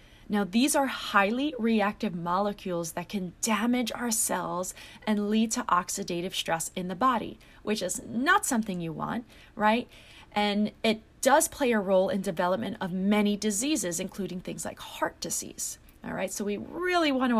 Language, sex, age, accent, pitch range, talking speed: English, female, 30-49, American, 185-235 Hz, 165 wpm